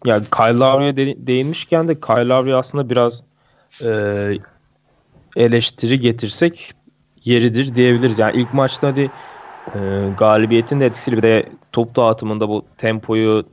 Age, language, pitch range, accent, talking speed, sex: 30-49, Turkish, 110-150 Hz, native, 115 wpm, male